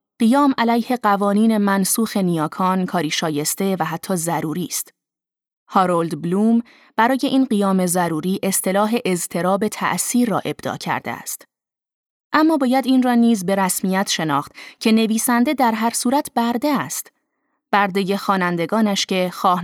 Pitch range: 180-225 Hz